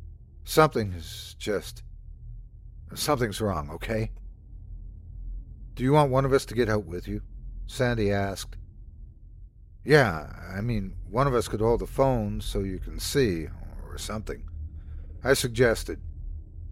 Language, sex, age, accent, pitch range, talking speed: English, male, 50-69, American, 85-125 Hz, 135 wpm